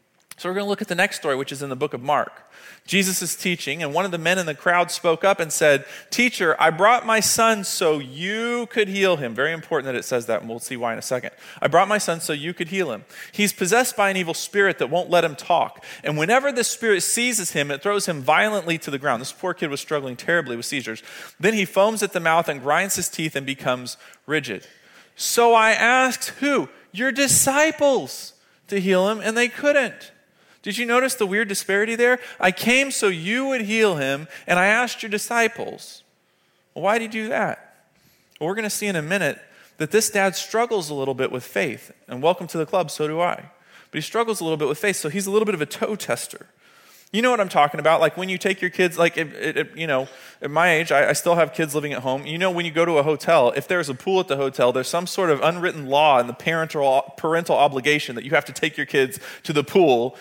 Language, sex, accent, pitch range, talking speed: English, male, American, 150-205 Hz, 245 wpm